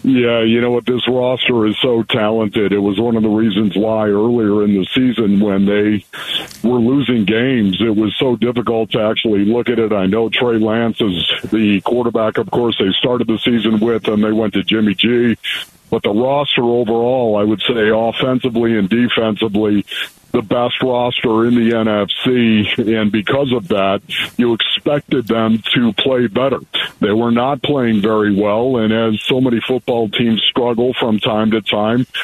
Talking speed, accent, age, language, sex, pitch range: 180 wpm, American, 50-69, English, male, 110-140 Hz